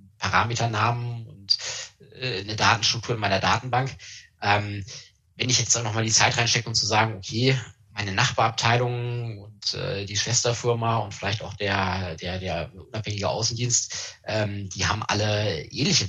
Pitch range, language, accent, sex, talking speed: 100-120 Hz, German, German, male, 135 wpm